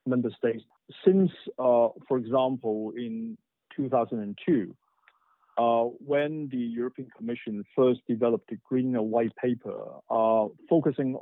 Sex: male